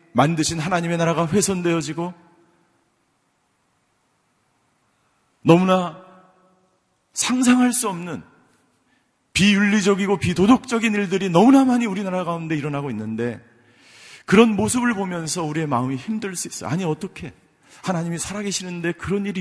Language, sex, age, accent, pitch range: Korean, male, 40-59, native, 125-190 Hz